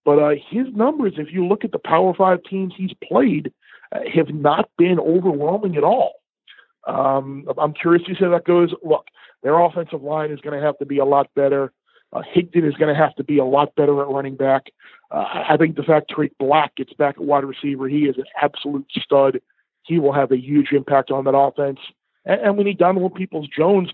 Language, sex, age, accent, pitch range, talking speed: English, male, 40-59, American, 145-175 Hz, 225 wpm